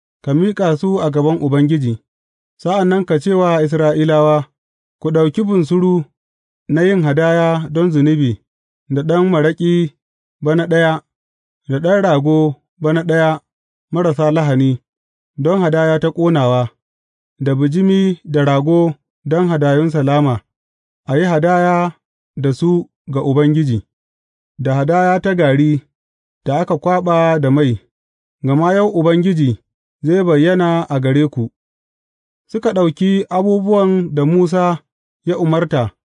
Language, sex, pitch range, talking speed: English, male, 140-180 Hz, 100 wpm